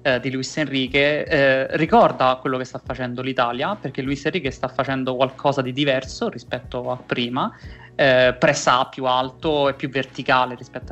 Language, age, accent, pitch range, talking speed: Italian, 20-39, native, 125-150 Hz, 160 wpm